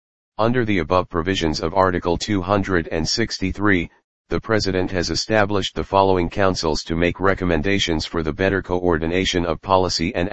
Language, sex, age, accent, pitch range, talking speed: English, male, 40-59, American, 85-100 Hz, 140 wpm